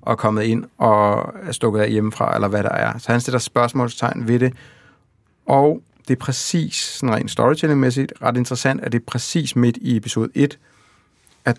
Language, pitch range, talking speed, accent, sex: Danish, 115-135 Hz, 190 wpm, native, male